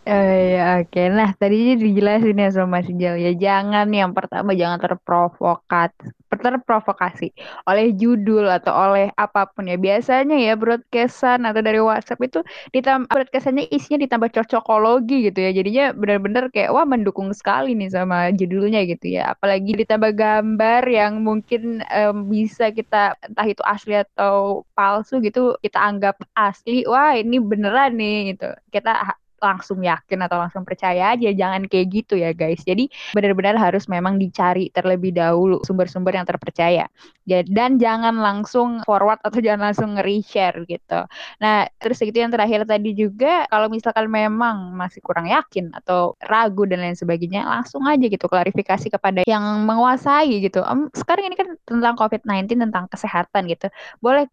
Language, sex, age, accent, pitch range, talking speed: Indonesian, female, 10-29, native, 185-225 Hz, 150 wpm